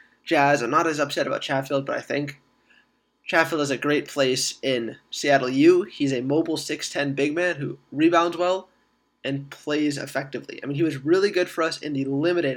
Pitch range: 135-155 Hz